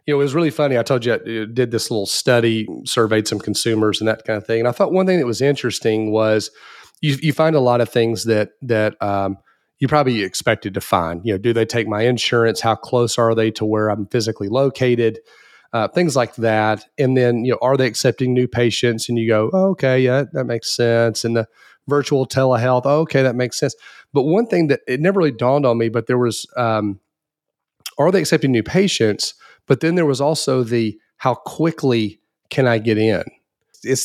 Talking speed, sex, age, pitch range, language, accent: 220 wpm, male, 30-49, 110-140 Hz, English, American